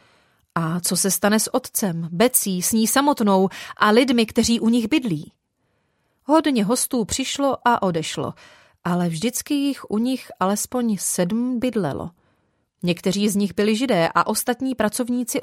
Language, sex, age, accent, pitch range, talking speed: Czech, female, 30-49, native, 180-245 Hz, 145 wpm